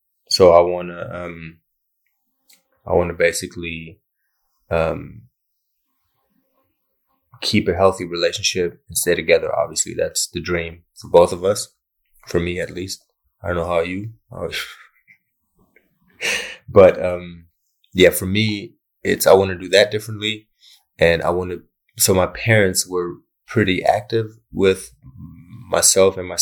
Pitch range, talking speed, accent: 85-100 Hz, 125 wpm, American